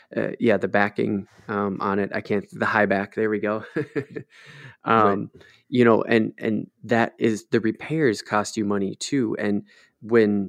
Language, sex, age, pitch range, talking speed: English, male, 20-39, 100-110 Hz, 170 wpm